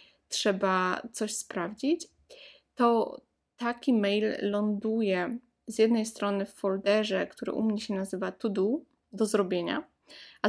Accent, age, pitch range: native, 20-39, 195-225 Hz